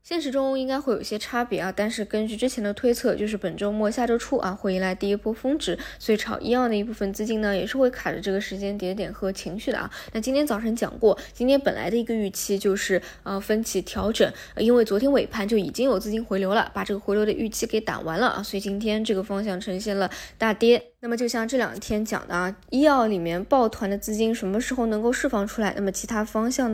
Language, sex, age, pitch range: Chinese, female, 20-39, 195-240 Hz